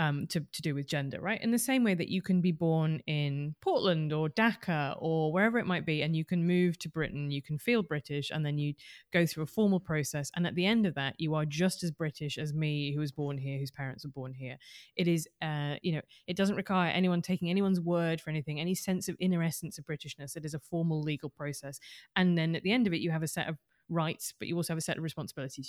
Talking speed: 265 wpm